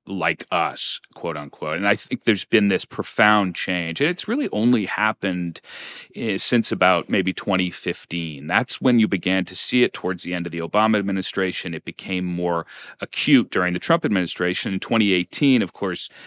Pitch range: 90-115 Hz